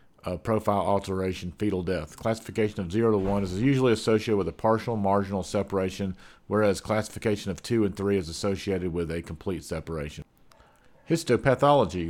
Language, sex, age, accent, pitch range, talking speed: English, male, 40-59, American, 90-110 Hz, 155 wpm